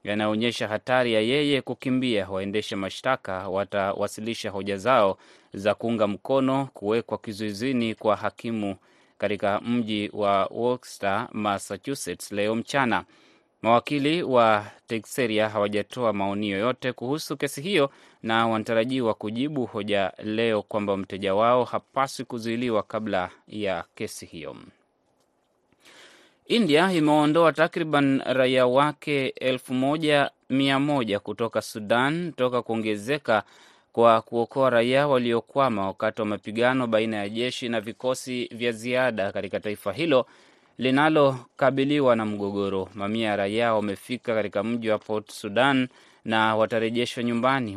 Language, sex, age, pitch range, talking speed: Swahili, male, 20-39, 105-130 Hz, 110 wpm